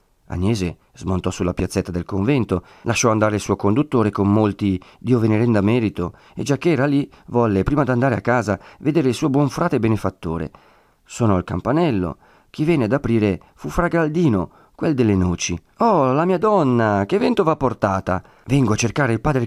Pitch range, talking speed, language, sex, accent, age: 100-150 Hz, 180 wpm, Italian, male, native, 40-59